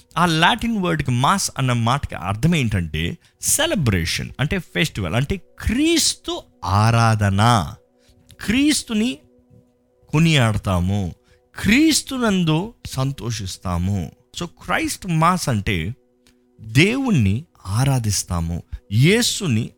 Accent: native